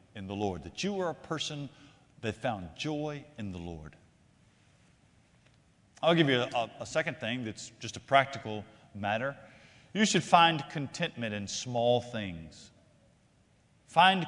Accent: American